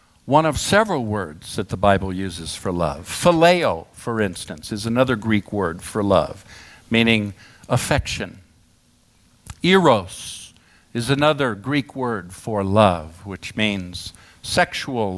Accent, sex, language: American, male, English